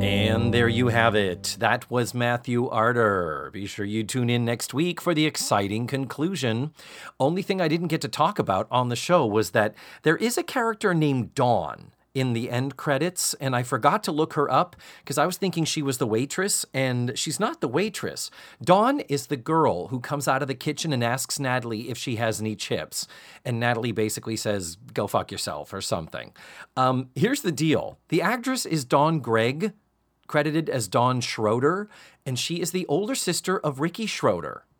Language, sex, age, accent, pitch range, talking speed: English, male, 40-59, American, 115-165 Hz, 195 wpm